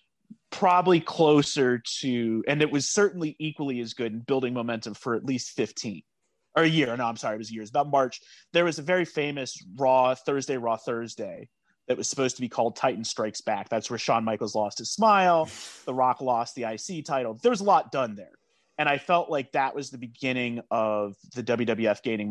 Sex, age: male, 30-49